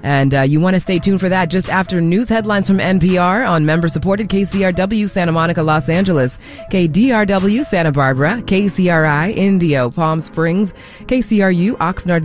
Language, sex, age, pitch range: English, female, 30-49, 150-195 Hz